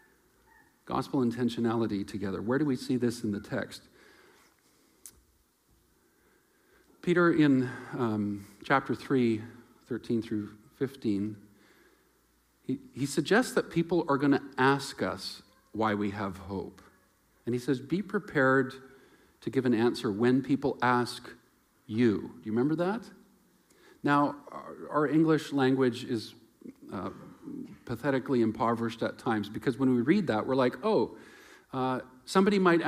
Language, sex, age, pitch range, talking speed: English, male, 50-69, 120-160 Hz, 130 wpm